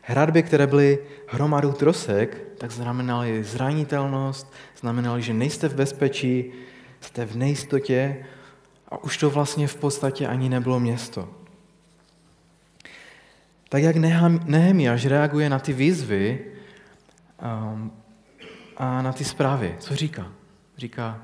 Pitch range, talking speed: 120-150 Hz, 110 wpm